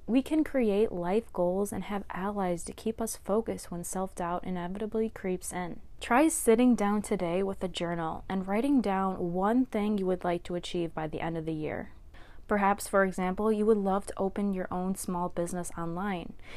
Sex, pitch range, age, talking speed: female, 180-220 Hz, 20-39, 190 wpm